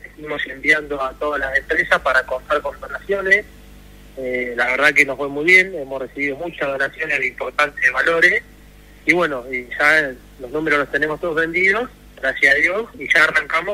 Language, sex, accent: Spanish, male, Argentinian